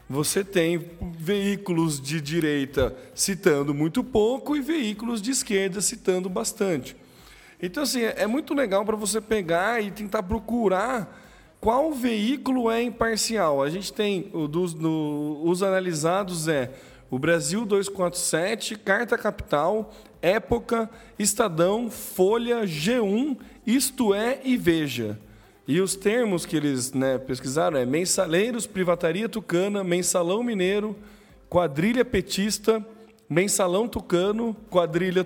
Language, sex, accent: Portuguese, male, Brazilian